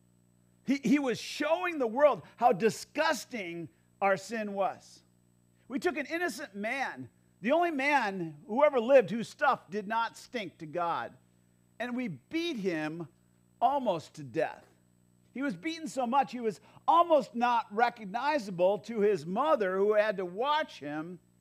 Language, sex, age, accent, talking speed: English, male, 50-69, American, 150 wpm